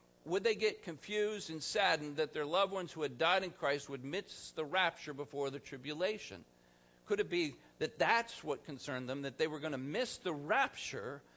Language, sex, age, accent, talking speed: English, male, 50-69, American, 200 wpm